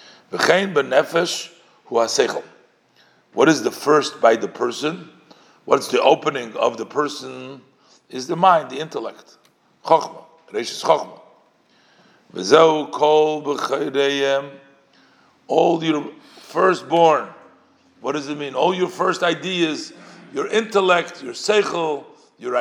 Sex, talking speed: male, 90 wpm